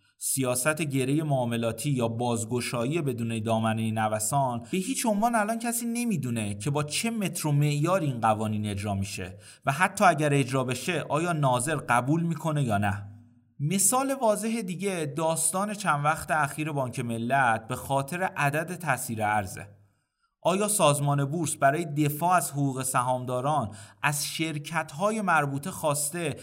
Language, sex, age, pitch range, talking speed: Persian, male, 30-49, 120-175 Hz, 135 wpm